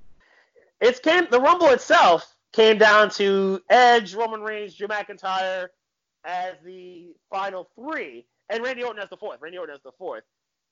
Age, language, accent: 30-49, English, American